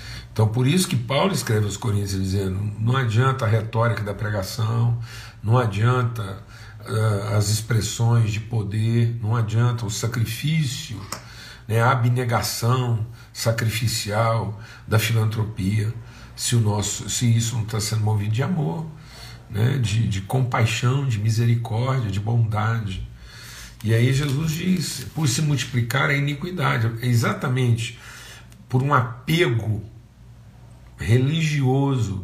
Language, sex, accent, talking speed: Portuguese, male, Brazilian, 125 wpm